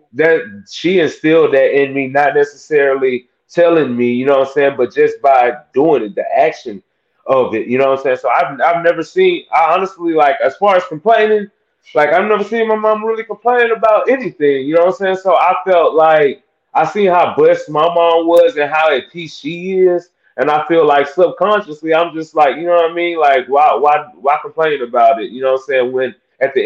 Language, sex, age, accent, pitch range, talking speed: English, male, 20-39, American, 150-220 Hz, 225 wpm